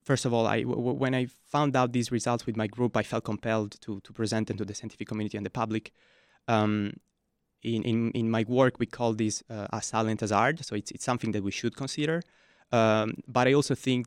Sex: male